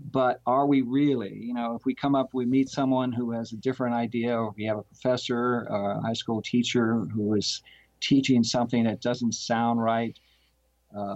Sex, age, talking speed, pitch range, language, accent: male, 50-69, 200 wpm, 105-125 Hz, English, American